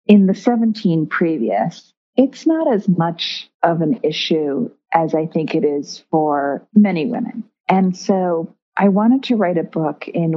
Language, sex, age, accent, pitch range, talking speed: English, female, 40-59, American, 160-205 Hz, 160 wpm